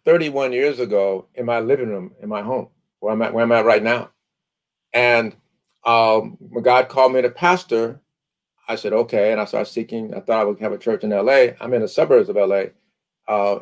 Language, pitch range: English, 120-180 Hz